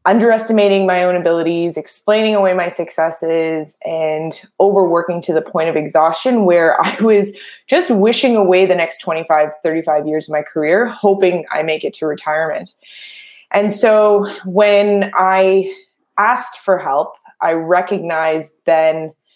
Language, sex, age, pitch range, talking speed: English, female, 20-39, 165-205 Hz, 140 wpm